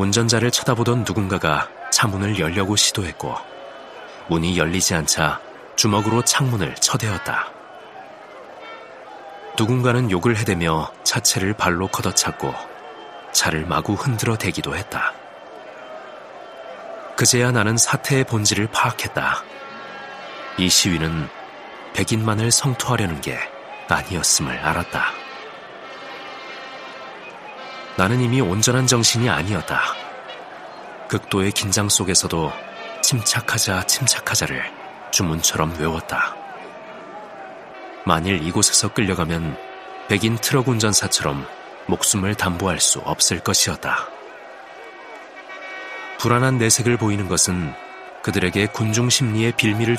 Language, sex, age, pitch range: Korean, male, 40-59, 90-120 Hz